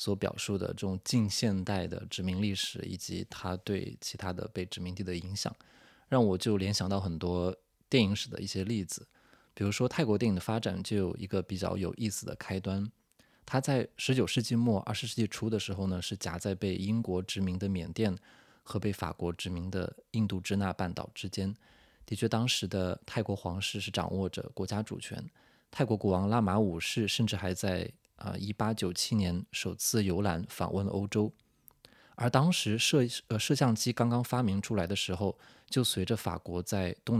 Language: Chinese